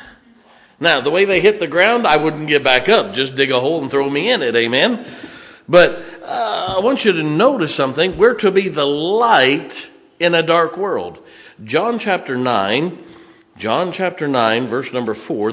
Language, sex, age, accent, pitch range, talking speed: English, male, 50-69, American, 120-180 Hz, 185 wpm